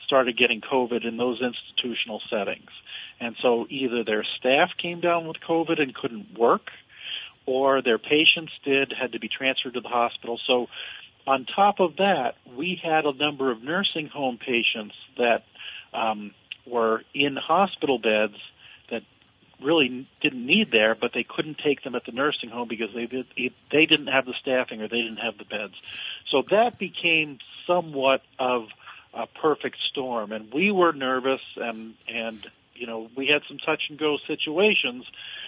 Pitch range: 115-150 Hz